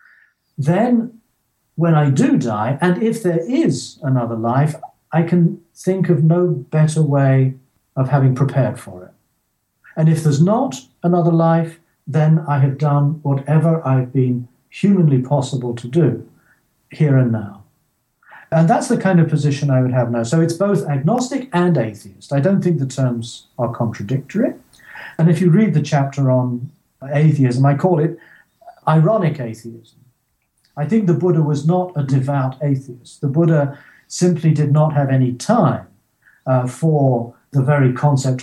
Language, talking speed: English, 160 wpm